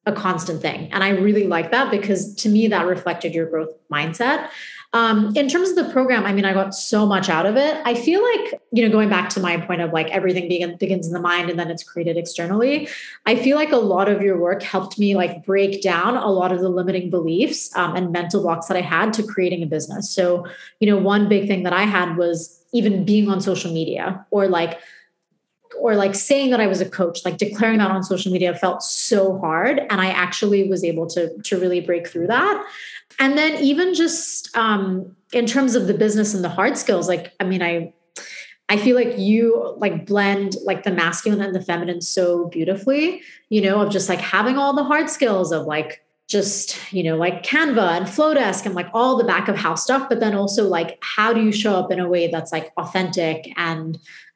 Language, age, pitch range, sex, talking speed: English, 20-39, 175-220 Hz, female, 225 wpm